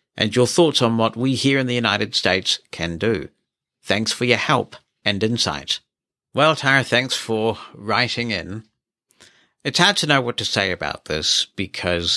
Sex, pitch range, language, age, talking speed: male, 95-115 Hz, English, 60-79, 175 wpm